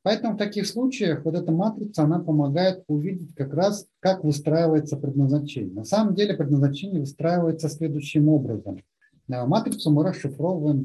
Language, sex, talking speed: Russian, male, 140 wpm